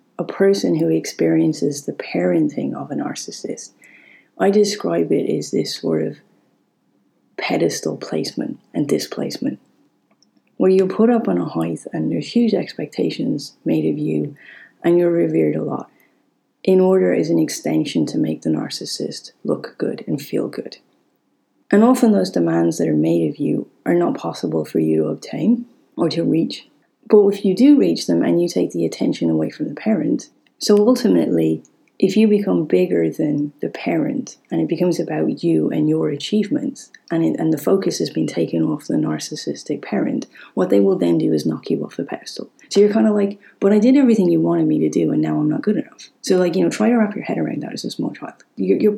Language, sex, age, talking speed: English, female, 30-49, 200 wpm